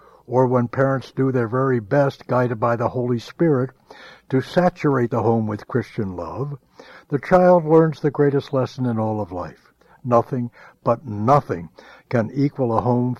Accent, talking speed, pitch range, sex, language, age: American, 165 wpm, 115-145 Hz, male, English, 60-79